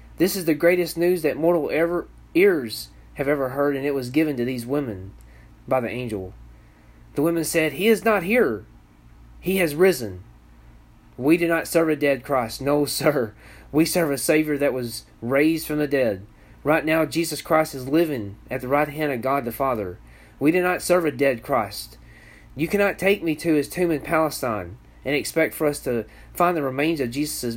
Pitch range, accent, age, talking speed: 120-155 Hz, American, 30-49, 195 wpm